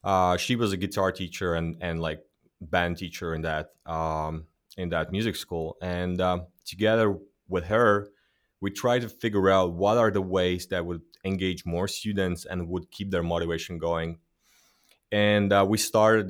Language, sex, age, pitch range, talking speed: English, male, 30-49, 90-105 Hz, 175 wpm